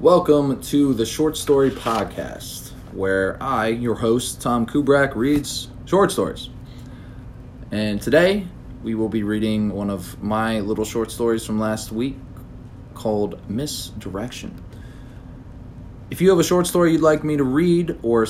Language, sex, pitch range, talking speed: English, male, 105-140 Hz, 145 wpm